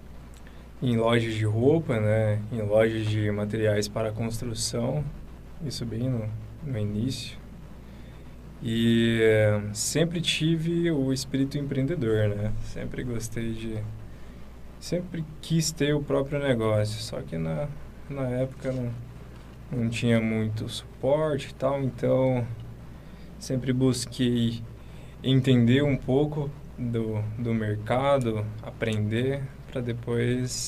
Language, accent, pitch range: Portuguese, Brazilian, 110-130 Hz